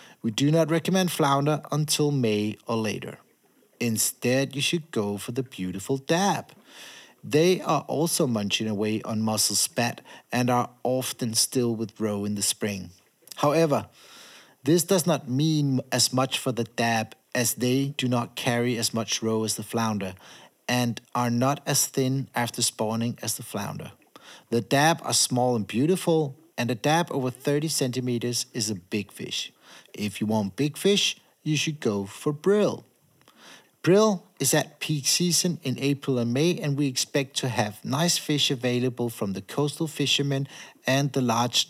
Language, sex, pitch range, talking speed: Danish, male, 115-145 Hz, 165 wpm